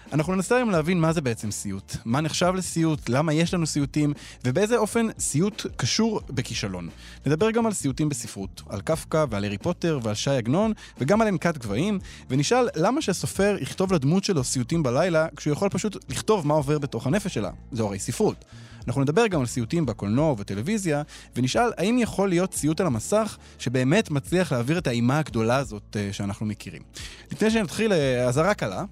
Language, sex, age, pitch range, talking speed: Hebrew, male, 20-39, 120-180 Hz, 175 wpm